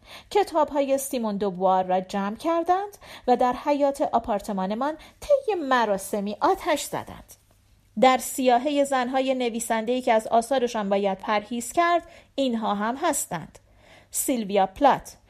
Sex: female